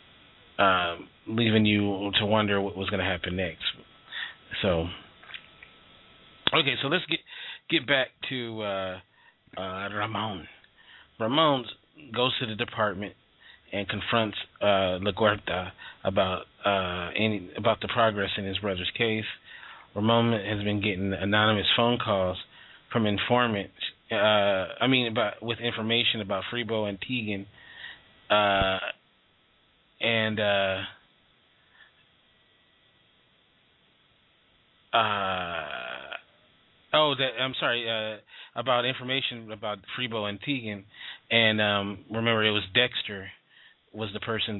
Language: English